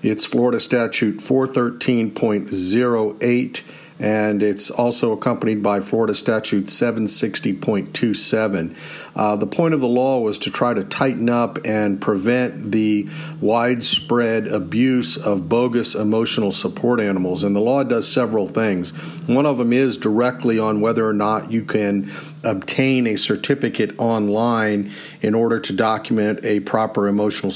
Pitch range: 105-125 Hz